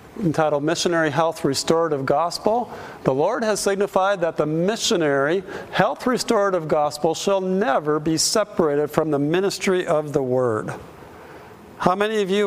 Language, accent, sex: English, American, male